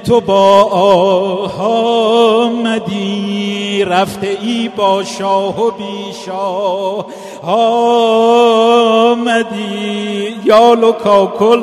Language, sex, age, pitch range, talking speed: Persian, male, 50-69, 220-260 Hz, 60 wpm